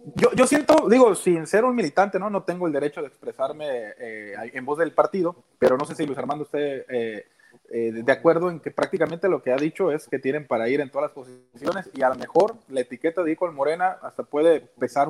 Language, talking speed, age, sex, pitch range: Spanish, 235 wpm, 30-49, male, 140-190 Hz